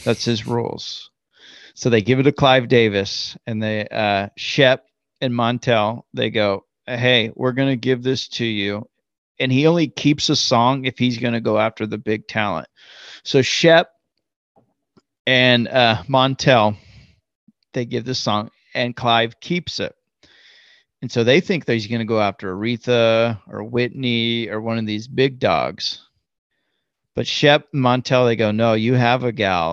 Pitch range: 105-130 Hz